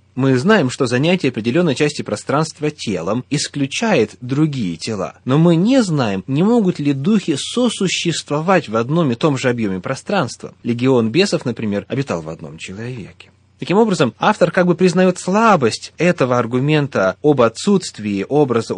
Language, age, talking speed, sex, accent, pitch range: Russian, 20-39, 145 wpm, male, native, 115-165 Hz